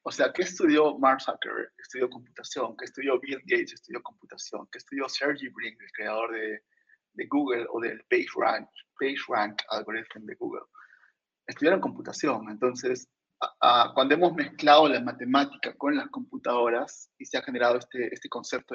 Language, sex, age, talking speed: Spanish, male, 30-49, 165 wpm